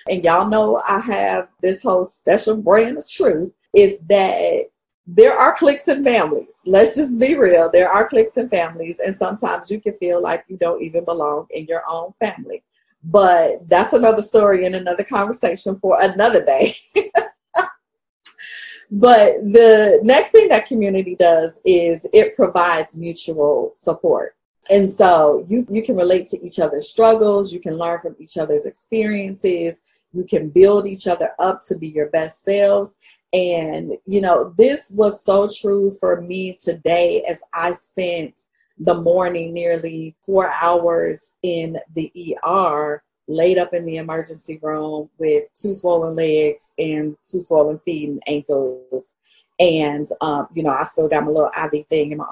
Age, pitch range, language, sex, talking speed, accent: 40-59, 165-210 Hz, English, female, 160 wpm, American